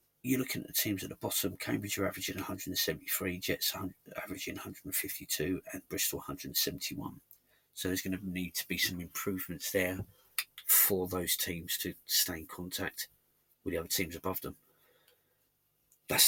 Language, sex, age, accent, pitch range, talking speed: English, male, 40-59, British, 85-95 Hz, 160 wpm